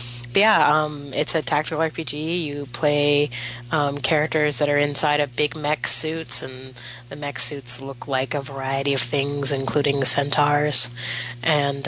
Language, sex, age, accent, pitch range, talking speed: English, female, 30-49, American, 130-150 Hz, 150 wpm